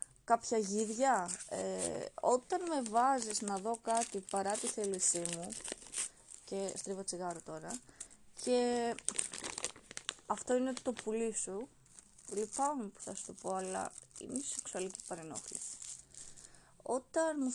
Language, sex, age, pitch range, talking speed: Greek, female, 20-39, 190-235 Hz, 120 wpm